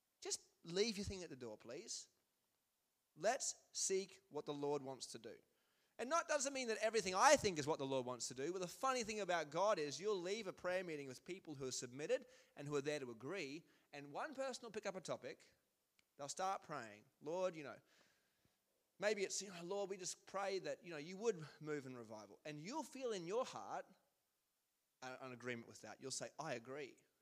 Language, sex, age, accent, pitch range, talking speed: English, male, 20-39, Australian, 145-210 Hz, 215 wpm